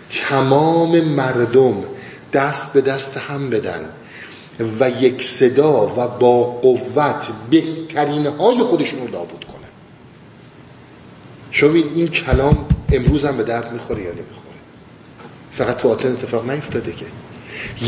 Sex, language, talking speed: male, Persian, 115 wpm